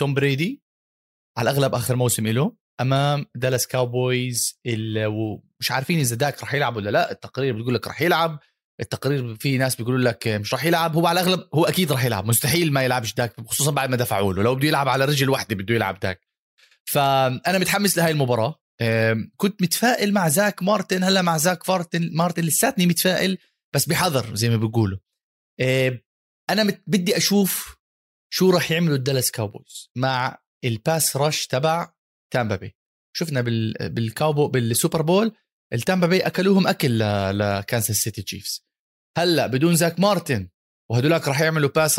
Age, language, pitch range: 30-49, Arabic, 125-175 Hz